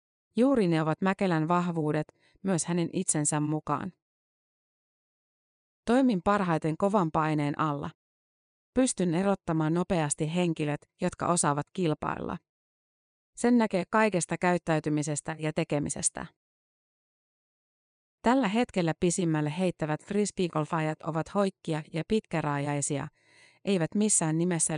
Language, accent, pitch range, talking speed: Finnish, native, 155-190 Hz, 95 wpm